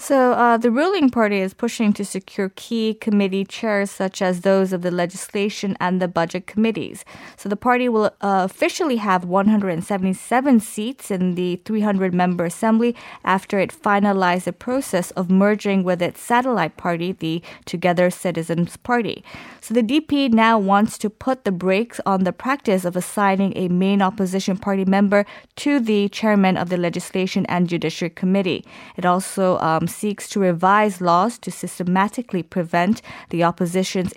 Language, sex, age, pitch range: Korean, female, 20-39, 180-220 Hz